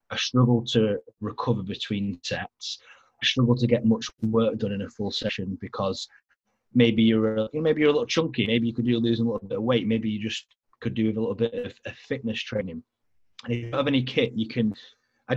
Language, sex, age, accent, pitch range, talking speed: English, male, 30-49, British, 105-125 Hz, 220 wpm